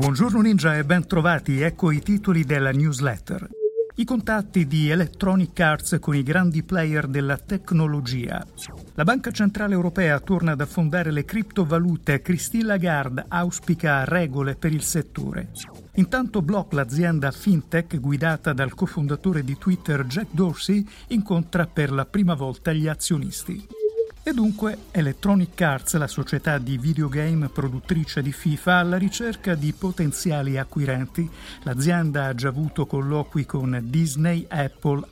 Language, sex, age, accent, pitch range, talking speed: Italian, male, 50-69, native, 140-180 Hz, 135 wpm